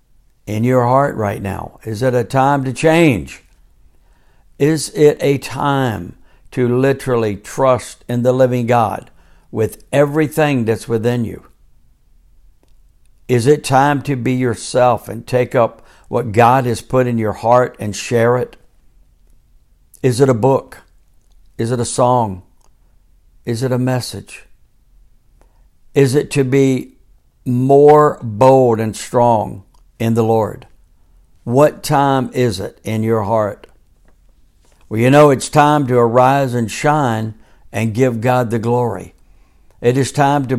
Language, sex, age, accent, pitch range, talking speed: English, male, 60-79, American, 110-135 Hz, 140 wpm